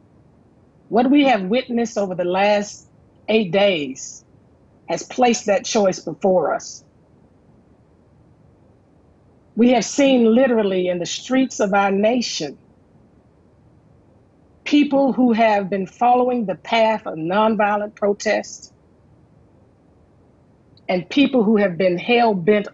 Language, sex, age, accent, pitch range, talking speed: English, female, 40-59, American, 195-245 Hz, 110 wpm